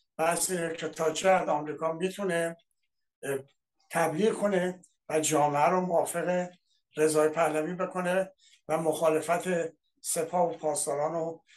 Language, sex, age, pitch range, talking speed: Persian, male, 60-79, 155-180 Hz, 100 wpm